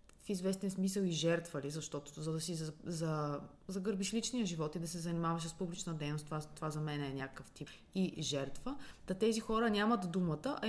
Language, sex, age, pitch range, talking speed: Bulgarian, female, 20-39, 165-220 Hz, 210 wpm